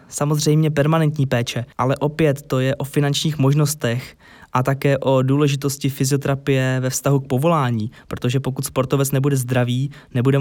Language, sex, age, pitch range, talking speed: Czech, male, 20-39, 130-155 Hz, 145 wpm